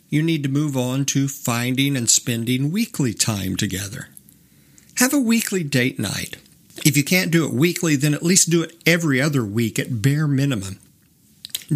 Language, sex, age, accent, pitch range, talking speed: English, male, 50-69, American, 120-170 Hz, 180 wpm